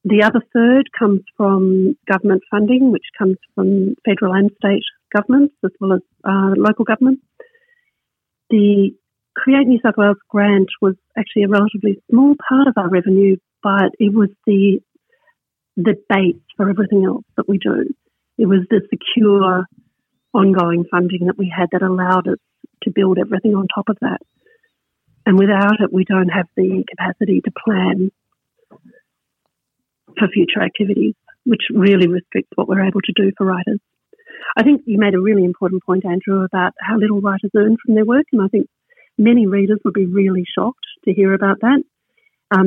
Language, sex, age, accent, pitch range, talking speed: English, female, 50-69, Australian, 190-225 Hz, 170 wpm